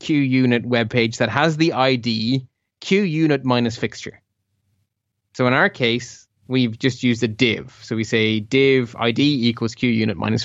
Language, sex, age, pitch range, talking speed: English, male, 20-39, 120-155 Hz, 155 wpm